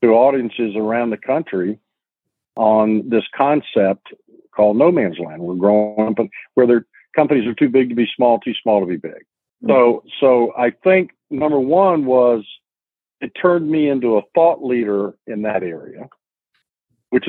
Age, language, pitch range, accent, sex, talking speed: 60-79, English, 100-125 Hz, American, male, 165 wpm